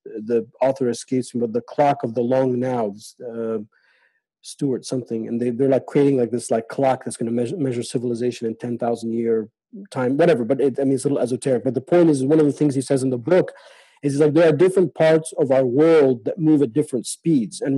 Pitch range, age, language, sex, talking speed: 125-150 Hz, 40-59, English, male, 245 wpm